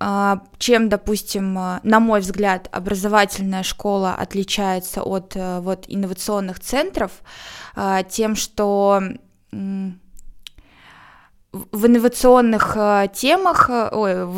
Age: 20-39